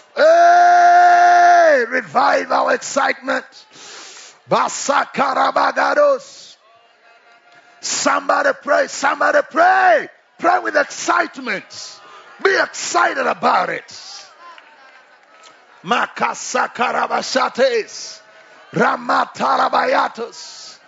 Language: English